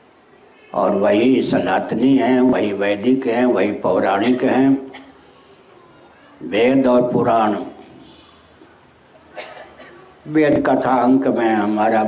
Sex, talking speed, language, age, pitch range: male, 90 wpm, Hindi, 60-79, 115-140 Hz